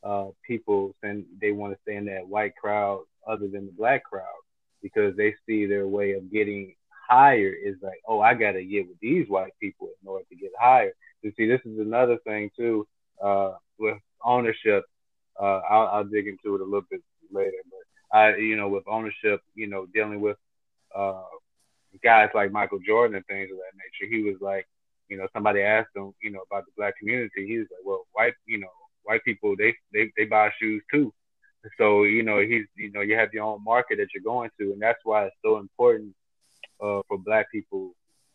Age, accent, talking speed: 30-49, American, 210 wpm